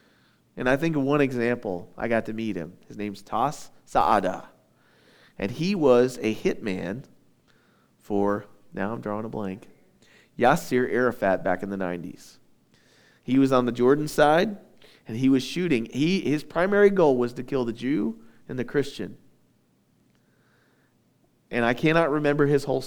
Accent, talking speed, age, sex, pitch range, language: American, 155 wpm, 40-59, male, 115-150 Hz, English